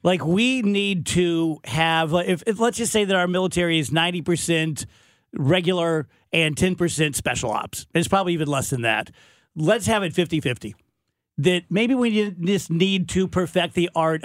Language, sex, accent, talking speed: English, male, American, 170 wpm